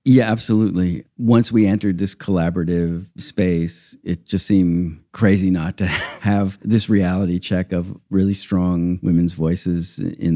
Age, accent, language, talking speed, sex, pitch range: 50-69, American, English, 140 wpm, male, 95-115 Hz